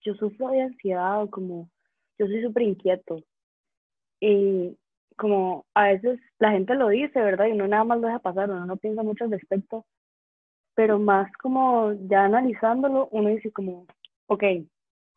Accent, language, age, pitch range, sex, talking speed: Colombian, English, 20-39, 180-220 Hz, female, 160 wpm